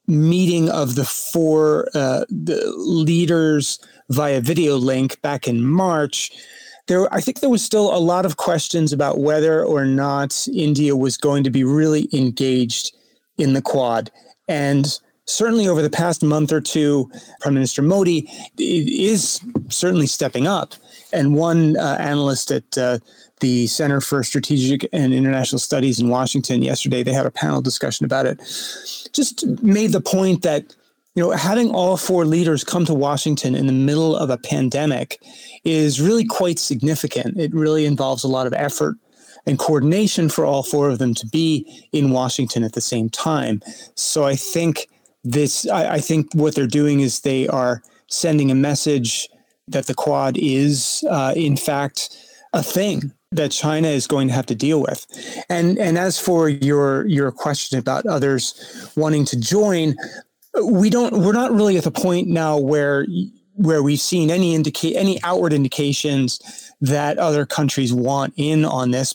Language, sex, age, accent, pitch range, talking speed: English, male, 30-49, American, 135-170 Hz, 165 wpm